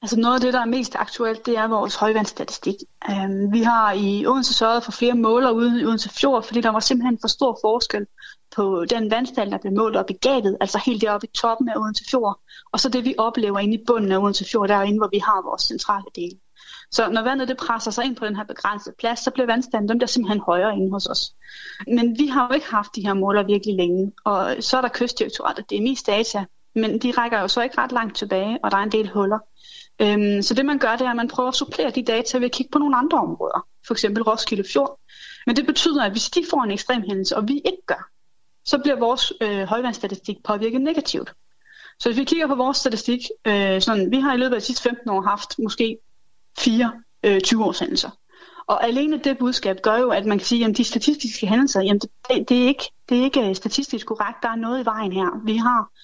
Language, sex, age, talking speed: Danish, female, 30-49, 230 wpm